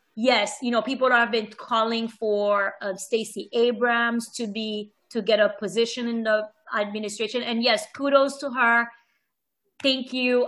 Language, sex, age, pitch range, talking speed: English, female, 30-49, 215-255 Hz, 155 wpm